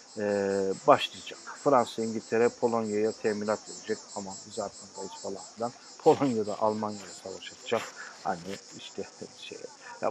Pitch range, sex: 100-110 Hz, male